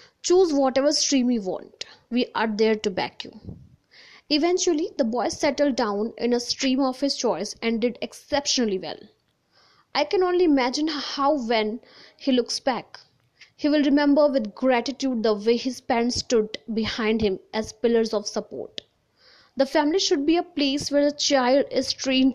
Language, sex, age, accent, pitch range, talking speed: Hindi, female, 20-39, native, 220-285 Hz, 165 wpm